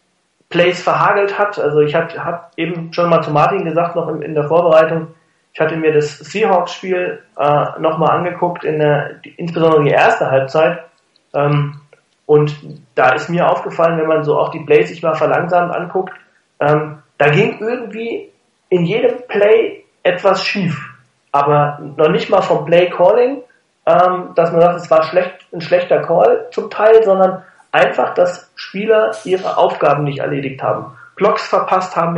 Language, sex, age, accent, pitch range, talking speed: German, male, 30-49, German, 150-180 Hz, 165 wpm